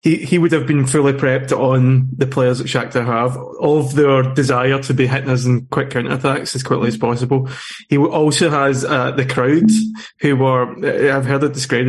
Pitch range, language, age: 130-150 Hz, English, 20-39